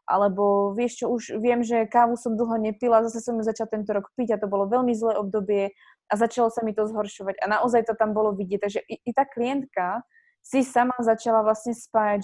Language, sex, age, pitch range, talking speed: Slovak, female, 20-39, 205-225 Hz, 220 wpm